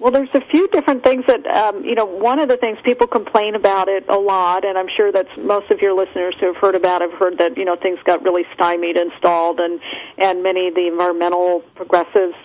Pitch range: 175-210 Hz